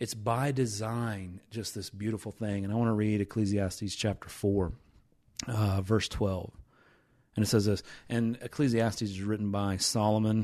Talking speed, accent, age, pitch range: 160 wpm, American, 30-49, 100-120 Hz